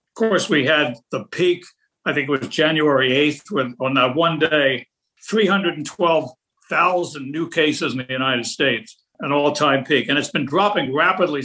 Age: 60-79